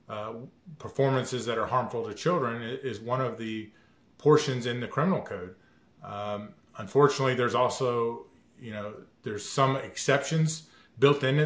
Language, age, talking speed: English, 30-49, 140 wpm